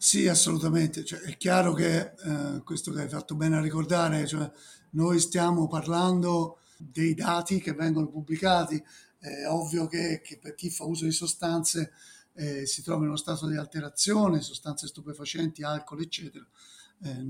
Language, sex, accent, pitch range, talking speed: Italian, male, native, 150-170 Hz, 155 wpm